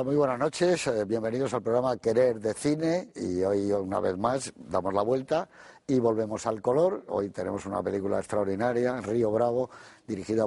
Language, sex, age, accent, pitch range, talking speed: Spanish, male, 50-69, Spanish, 100-115 Hz, 165 wpm